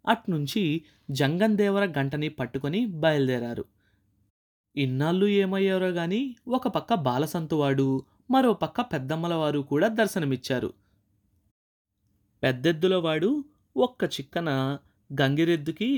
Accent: native